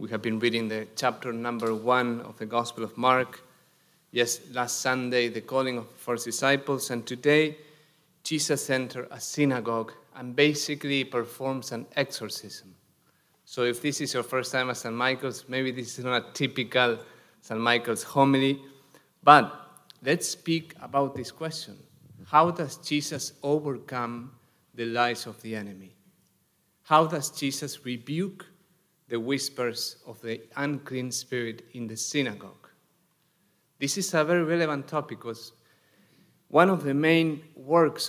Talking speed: 145 wpm